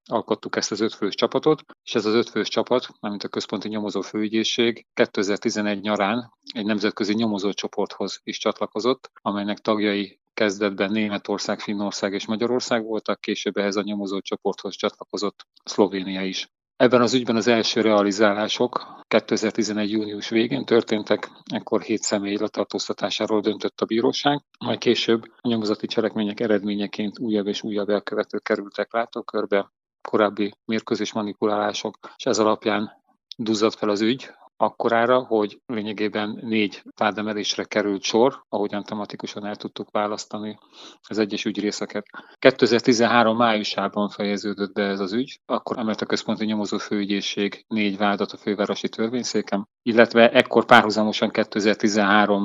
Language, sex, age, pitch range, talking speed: Hungarian, male, 40-59, 105-115 Hz, 130 wpm